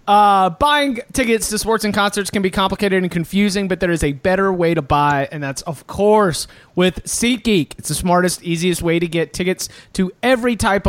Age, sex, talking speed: 30-49, male, 205 wpm